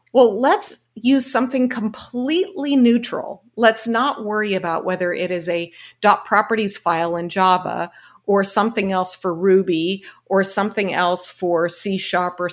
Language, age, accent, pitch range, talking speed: English, 50-69, American, 180-225 Hz, 140 wpm